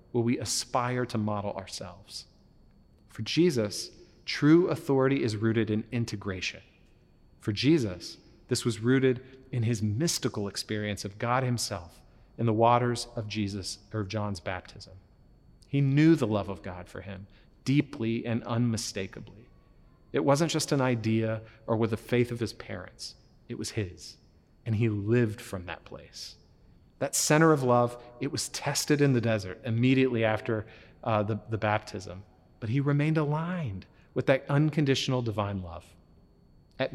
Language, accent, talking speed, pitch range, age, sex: English, American, 150 wpm, 105-130 Hz, 40-59, male